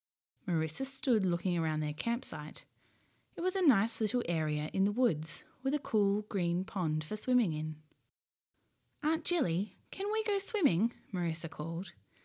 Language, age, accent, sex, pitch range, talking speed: English, 20-39, Australian, female, 155-250 Hz, 150 wpm